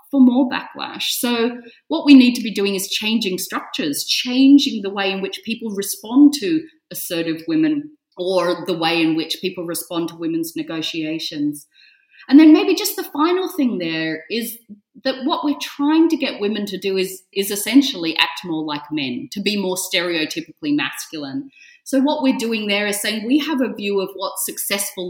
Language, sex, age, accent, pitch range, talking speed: English, female, 30-49, Australian, 185-280 Hz, 185 wpm